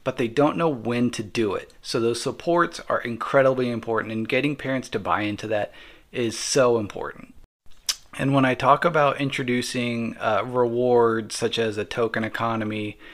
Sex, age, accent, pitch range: male, 30-49, American, 115-150 Hz